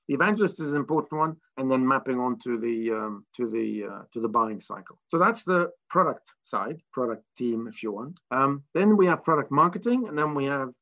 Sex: male